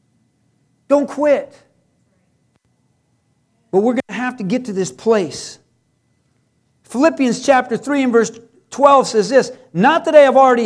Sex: male